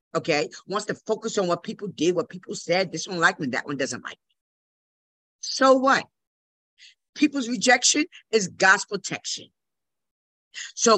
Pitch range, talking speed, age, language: 175-245 Hz, 155 wpm, 50-69, English